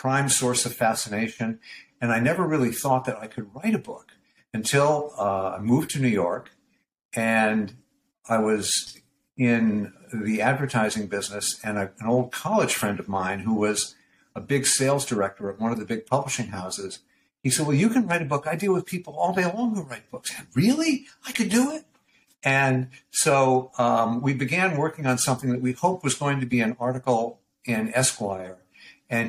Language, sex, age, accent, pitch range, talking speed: English, male, 60-79, American, 115-140 Hz, 190 wpm